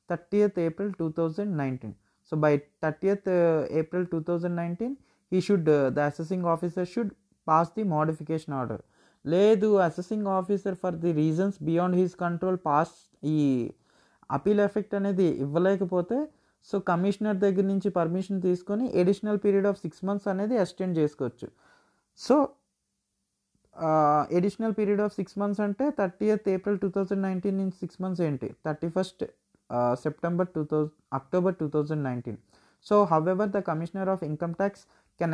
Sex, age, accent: male, 30-49, native